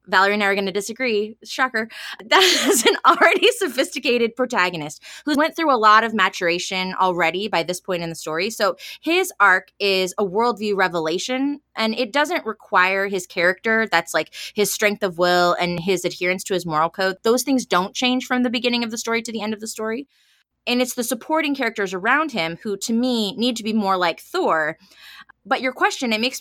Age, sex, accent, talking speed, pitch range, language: 20-39, female, American, 205 wpm, 180-245 Hz, English